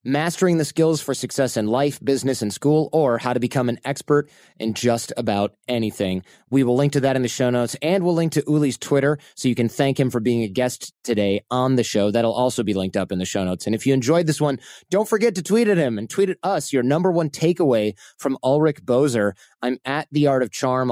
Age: 30-49